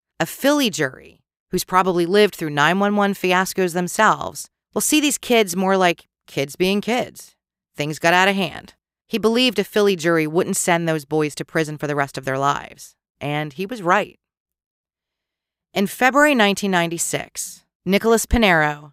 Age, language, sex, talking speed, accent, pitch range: 40-59, English, female, 160 wpm, American, 155-190 Hz